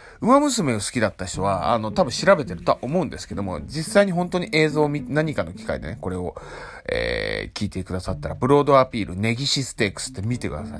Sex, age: male, 30-49